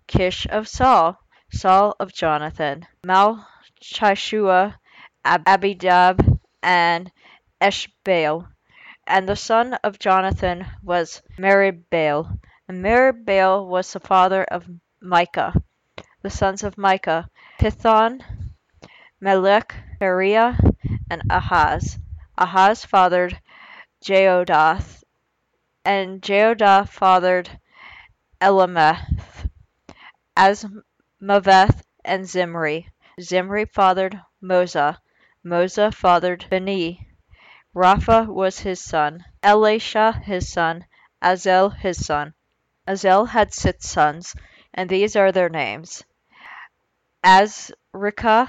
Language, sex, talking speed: English, female, 85 wpm